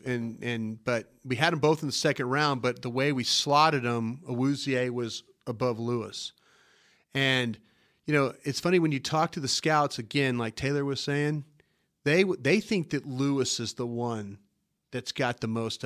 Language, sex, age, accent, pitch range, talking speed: English, male, 40-59, American, 125-165 Hz, 185 wpm